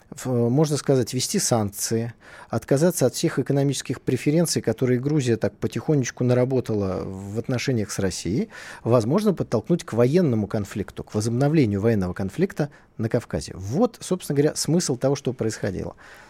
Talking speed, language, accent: 135 wpm, Russian, native